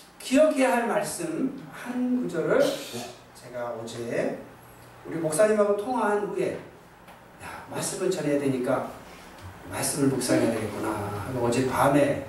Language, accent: Korean, native